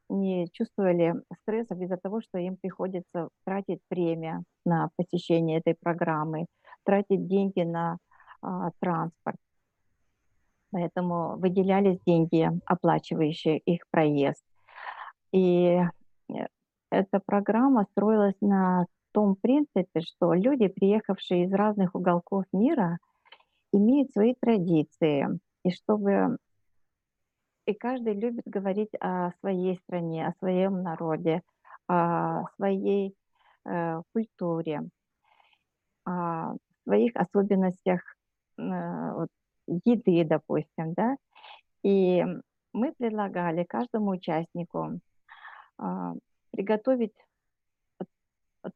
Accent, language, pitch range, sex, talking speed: native, Russian, 170-205 Hz, female, 90 wpm